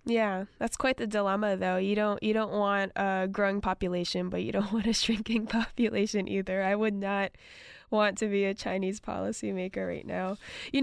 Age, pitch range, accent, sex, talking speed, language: 10-29, 195-235 Hz, American, female, 190 wpm, English